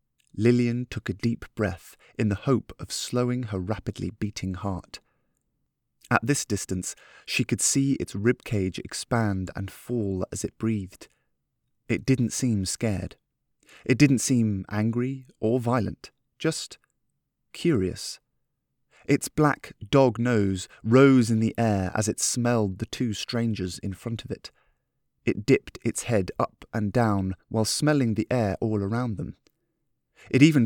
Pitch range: 100-125 Hz